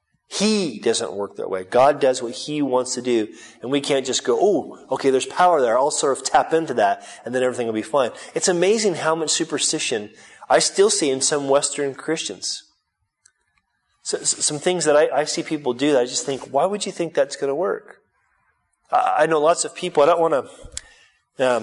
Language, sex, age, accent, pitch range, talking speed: English, male, 30-49, American, 130-170 Hz, 215 wpm